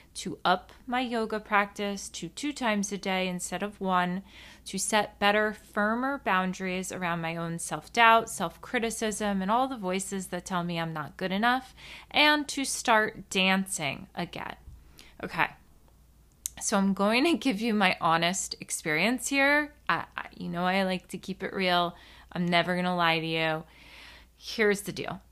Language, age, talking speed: English, 30-49, 160 wpm